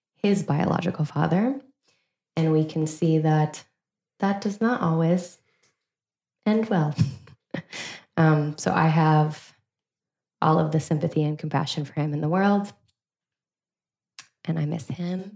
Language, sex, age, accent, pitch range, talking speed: English, female, 20-39, American, 155-180 Hz, 130 wpm